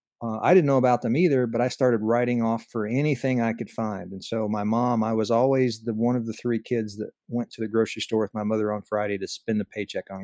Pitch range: 110-130 Hz